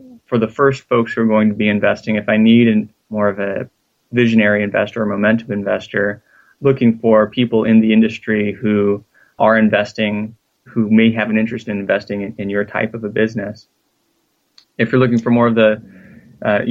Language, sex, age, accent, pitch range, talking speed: English, male, 20-39, American, 110-120 Hz, 185 wpm